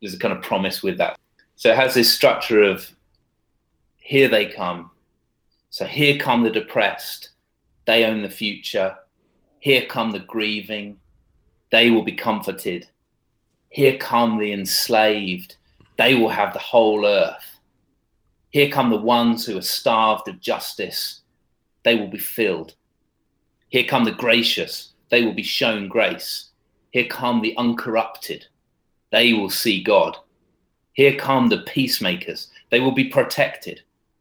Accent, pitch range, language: British, 95-120 Hz, English